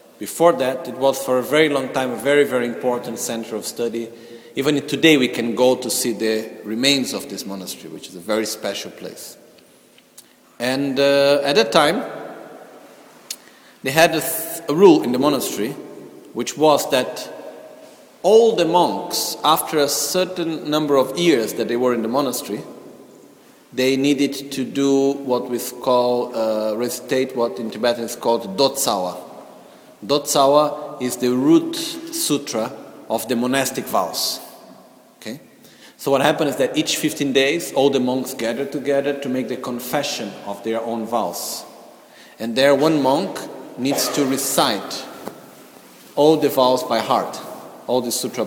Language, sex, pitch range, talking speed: Italian, male, 120-150 Hz, 155 wpm